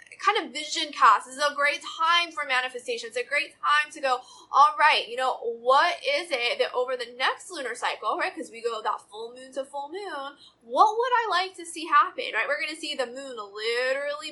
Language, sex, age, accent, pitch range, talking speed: English, female, 20-39, American, 250-345 Hz, 220 wpm